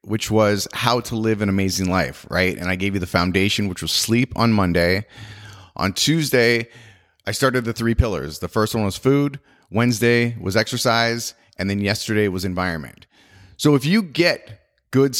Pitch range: 95-120 Hz